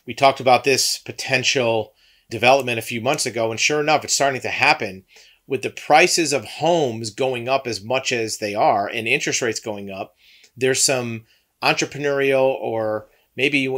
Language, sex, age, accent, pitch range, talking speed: English, male, 40-59, American, 110-135 Hz, 175 wpm